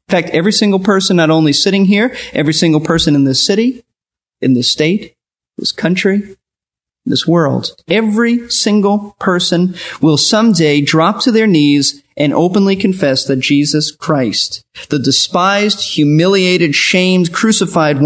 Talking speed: 140 wpm